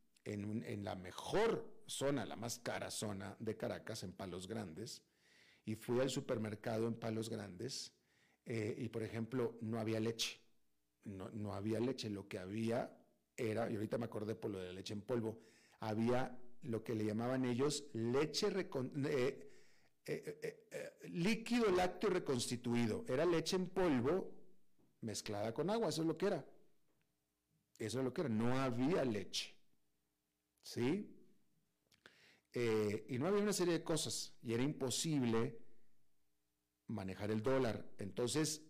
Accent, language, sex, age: Mexican, Spanish, male, 40-59